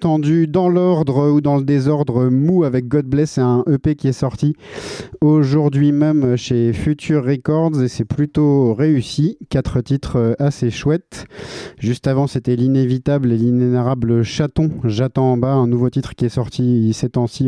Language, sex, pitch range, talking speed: French, male, 115-145 Hz, 160 wpm